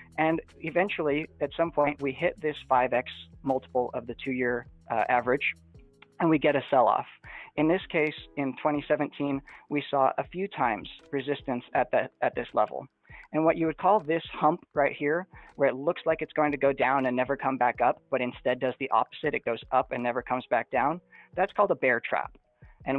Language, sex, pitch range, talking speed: Bulgarian, male, 130-155 Hz, 205 wpm